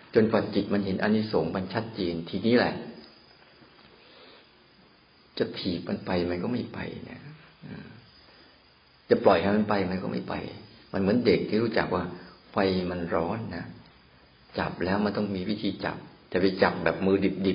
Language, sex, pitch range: Thai, male, 90-105 Hz